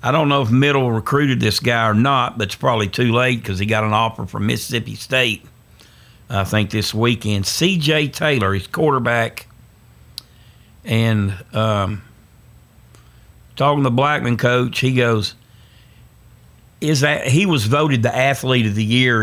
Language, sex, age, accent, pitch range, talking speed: English, male, 50-69, American, 105-130 Hz, 155 wpm